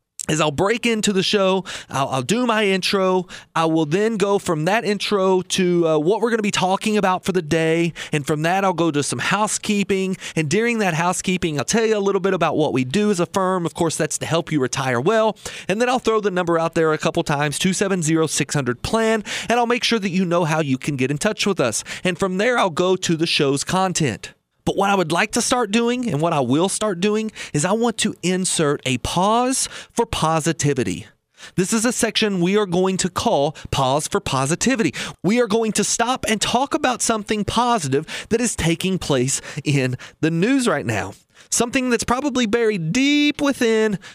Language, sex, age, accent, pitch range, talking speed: English, male, 30-49, American, 155-210 Hz, 215 wpm